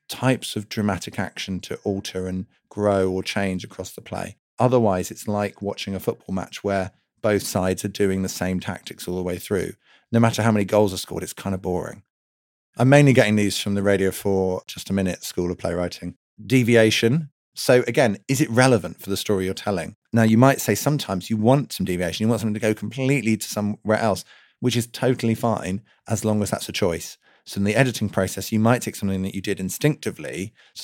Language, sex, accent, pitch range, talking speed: English, male, British, 95-115 Hz, 215 wpm